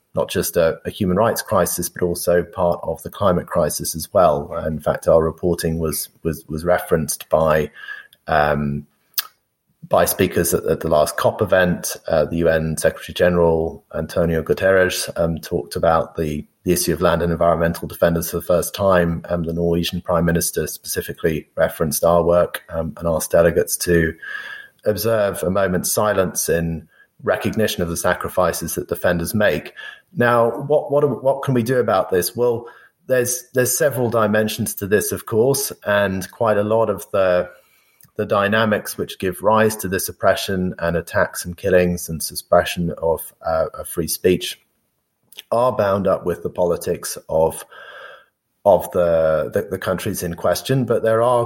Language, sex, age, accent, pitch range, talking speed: English, male, 30-49, British, 85-110 Hz, 165 wpm